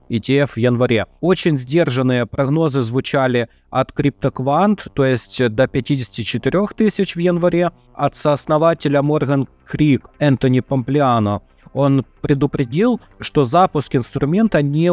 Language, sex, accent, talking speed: Russian, male, native, 115 wpm